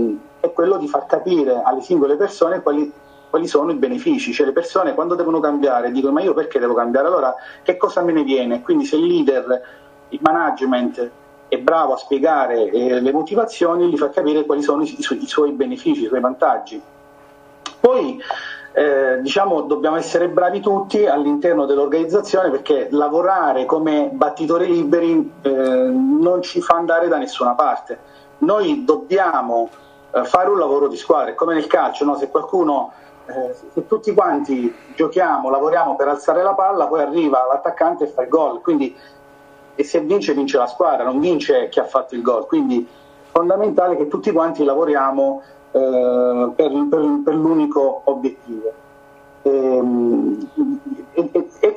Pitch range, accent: 140-205 Hz, native